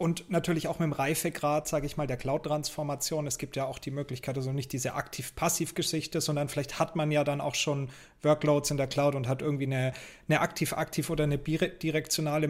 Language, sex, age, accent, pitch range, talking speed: German, male, 30-49, German, 145-165 Hz, 200 wpm